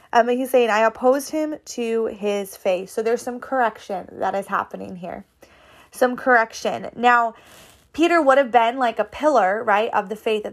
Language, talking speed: English, 180 wpm